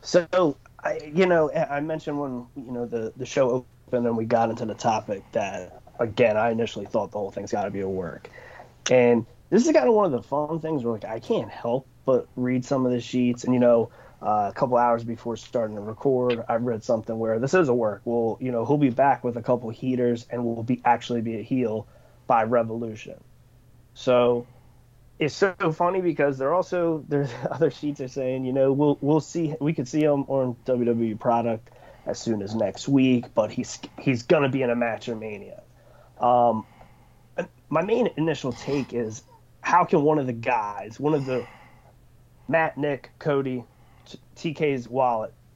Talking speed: 200 wpm